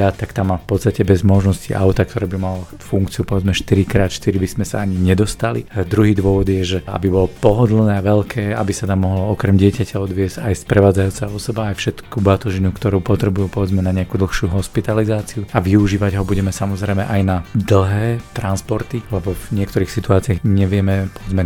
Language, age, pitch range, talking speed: Slovak, 40-59, 95-105 Hz, 175 wpm